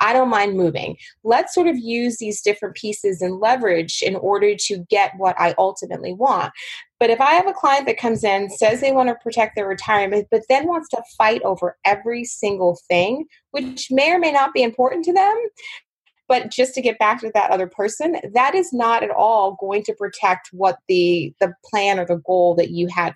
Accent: American